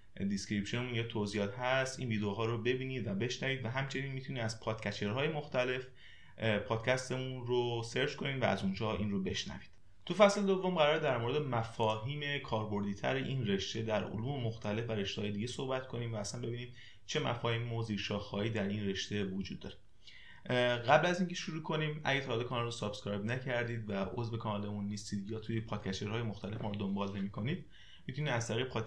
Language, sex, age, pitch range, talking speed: Persian, male, 30-49, 110-135 Hz, 175 wpm